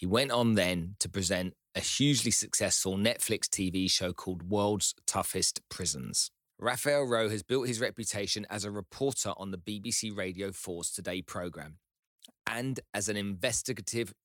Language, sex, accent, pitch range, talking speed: English, male, British, 100-120 Hz, 150 wpm